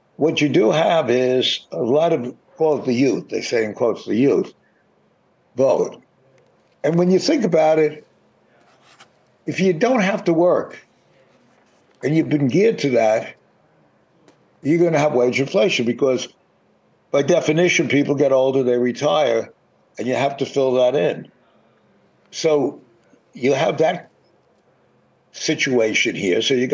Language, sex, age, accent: English, male, 60-79, American